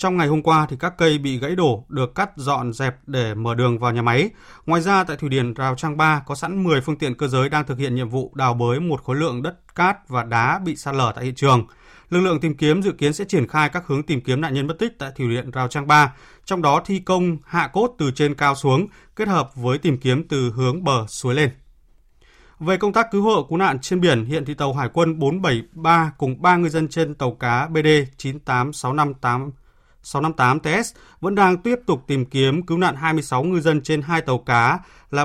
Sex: male